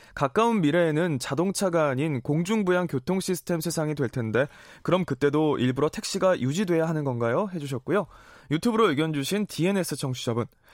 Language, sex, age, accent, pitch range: Korean, male, 20-39, native, 135-185 Hz